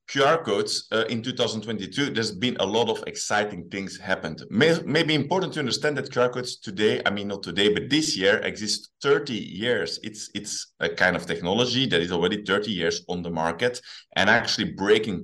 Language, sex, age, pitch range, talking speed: English, male, 30-49, 95-120 Hz, 190 wpm